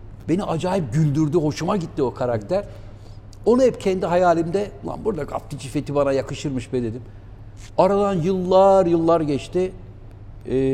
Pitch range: 120-175 Hz